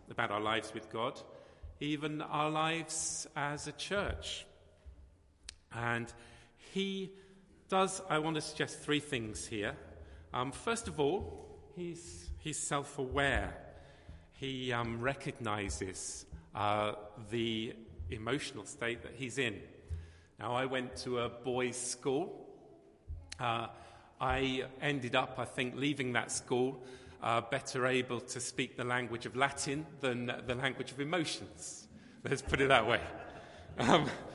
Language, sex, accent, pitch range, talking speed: English, male, British, 95-140 Hz, 130 wpm